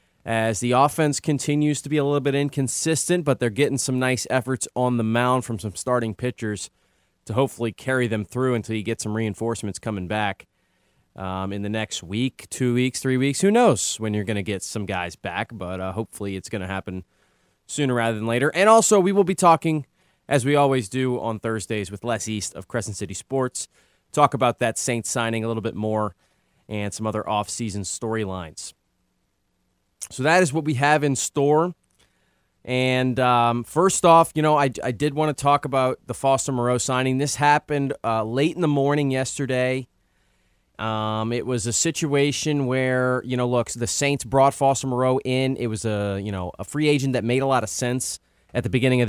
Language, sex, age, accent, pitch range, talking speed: English, male, 20-39, American, 110-135 Hz, 200 wpm